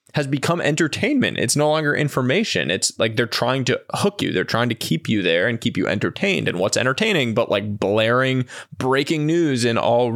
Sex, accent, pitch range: male, American, 115-140 Hz